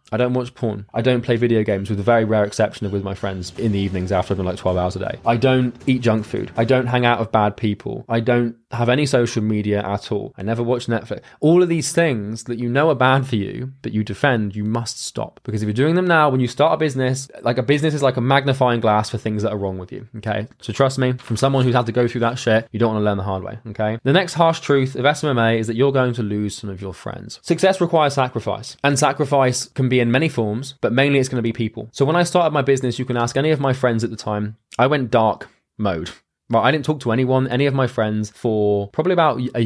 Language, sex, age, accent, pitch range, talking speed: English, male, 20-39, British, 110-130 Hz, 280 wpm